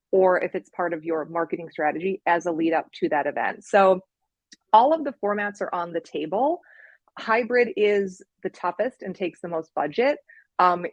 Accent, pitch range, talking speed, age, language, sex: American, 170-200 Hz, 185 wpm, 30-49, English, female